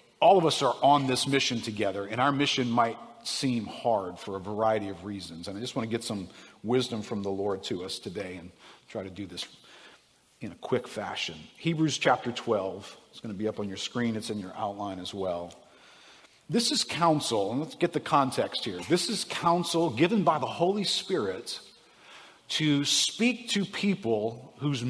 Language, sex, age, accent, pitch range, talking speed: English, male, 50-69, American, 110-170 Hz, 195 wpm